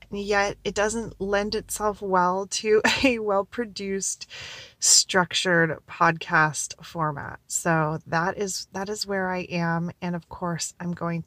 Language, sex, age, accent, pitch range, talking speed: English, female, 30-49, American, 165-200 Hz, 135 wpm